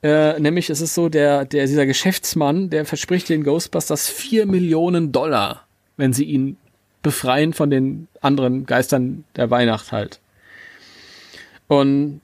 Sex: male